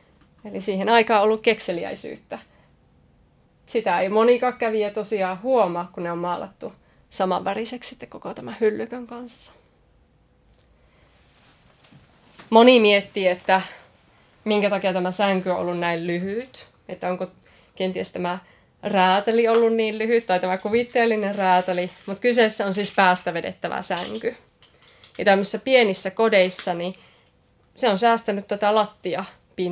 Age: 20-39